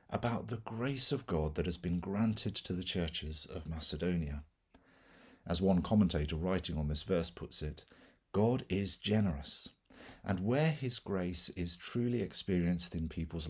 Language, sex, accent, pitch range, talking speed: English, male, British, 80-105 Hz, 155 wpm